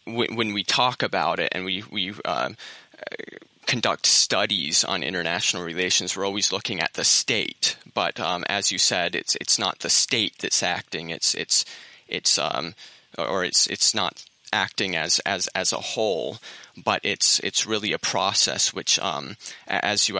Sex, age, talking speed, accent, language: male, 20-39, 165 wpm, American, English